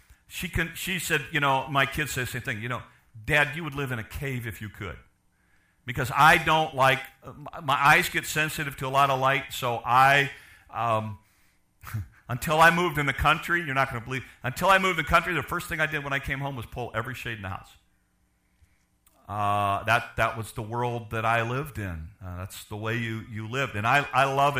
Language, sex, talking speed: English, male, 230 wpm